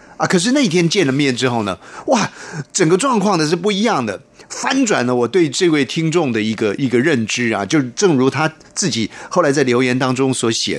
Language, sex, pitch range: Chinese, male, 115-180 Hz